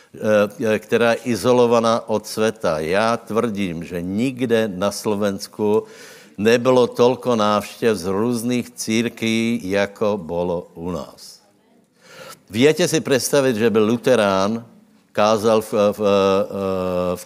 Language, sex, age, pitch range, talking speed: Slovak, male, 70-89, 100-120 Hz, 110 wpm